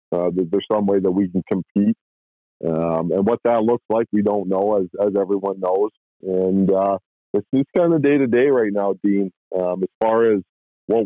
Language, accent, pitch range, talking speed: English, American, 90-110 Hz, 195 wpm